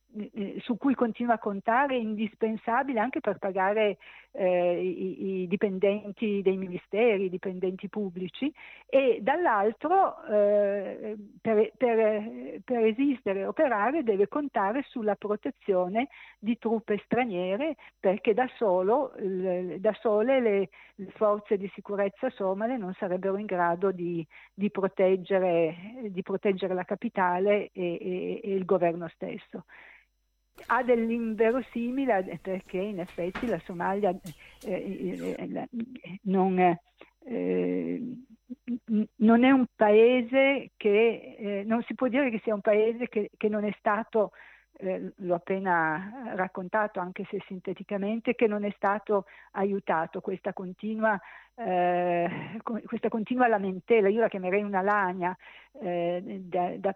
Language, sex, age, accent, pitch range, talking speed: Italian, female, 50-69, native, 185-225 Hz, 120 wpm